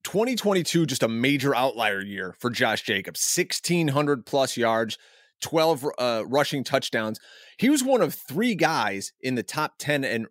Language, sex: English, male